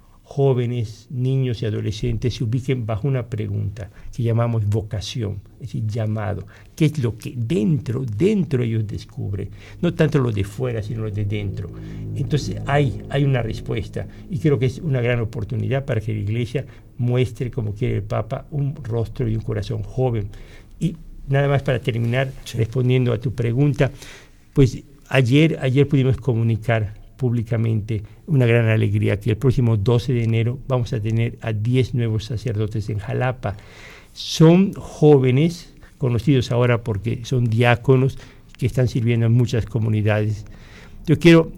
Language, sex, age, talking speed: Spanish, male, 50-69, 155 wpm